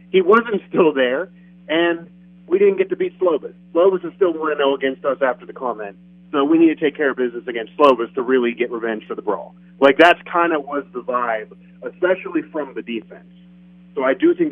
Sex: male